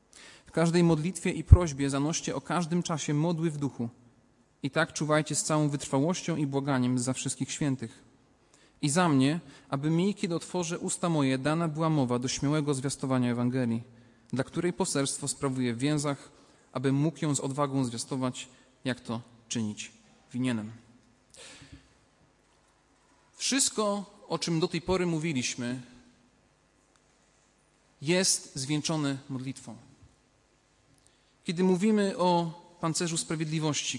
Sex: male